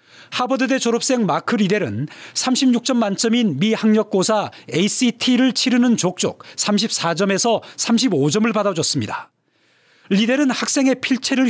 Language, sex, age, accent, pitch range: Korean, male, 40-59, native, 190-235 Hz